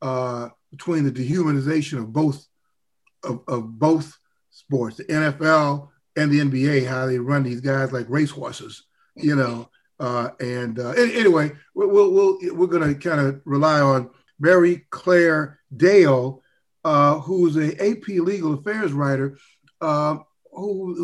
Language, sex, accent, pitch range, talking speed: English, male, American, 140-175 Hz, 135 wpm